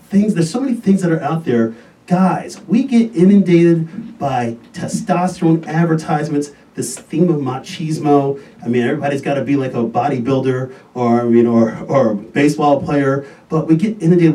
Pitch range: 120-165 Hz